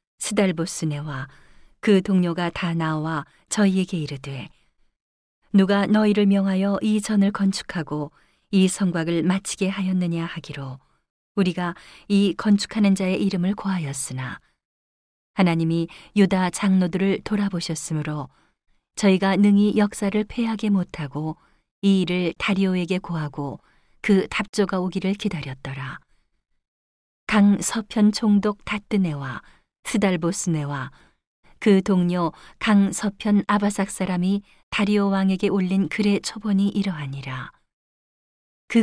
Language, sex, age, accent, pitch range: Korean, female, 40-59, native, 160-205 Hz